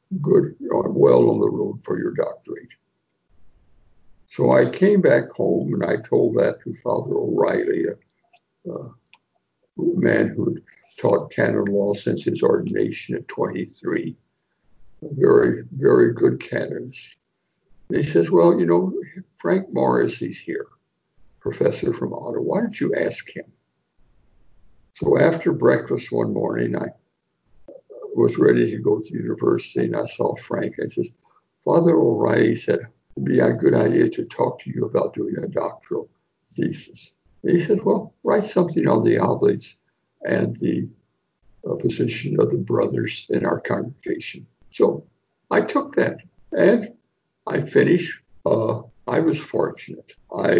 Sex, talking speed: male, 145 wpm